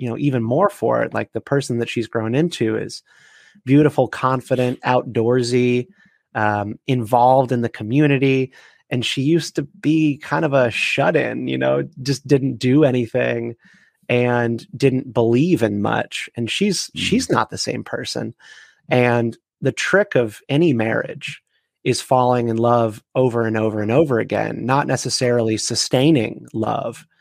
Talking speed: 155 wpm